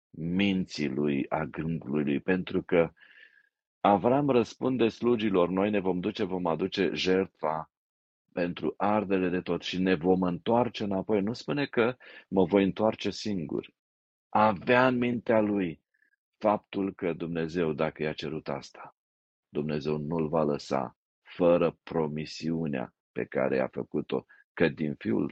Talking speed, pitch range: 135 wpm, 80-100 Hz